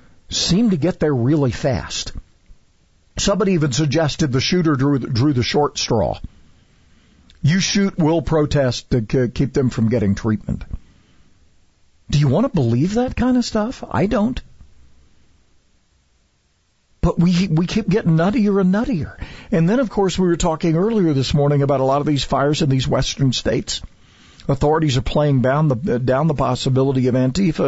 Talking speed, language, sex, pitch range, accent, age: 160 wpm, English, male, 110-160 Hz, American, 50-69